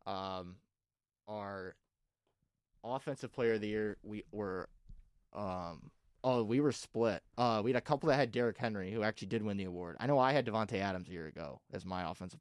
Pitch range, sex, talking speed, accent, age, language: 95-115 Hz, male, 200 wpm, American, 20-39, English